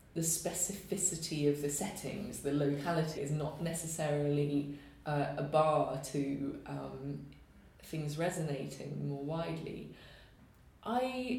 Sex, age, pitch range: female, 20-39, 140-170 Hz